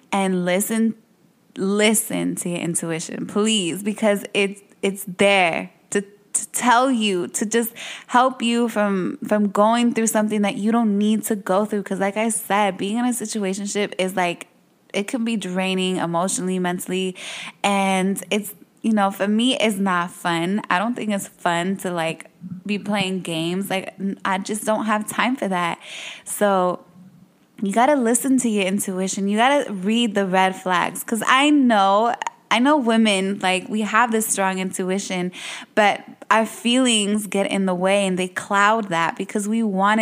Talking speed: 170 wpm